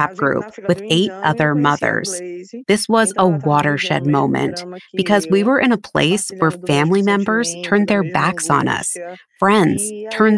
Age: 30-49